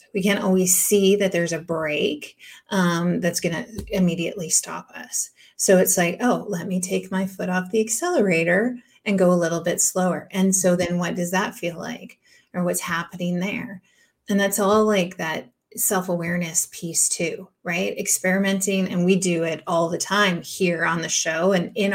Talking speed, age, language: 185 wpm, 30-49, English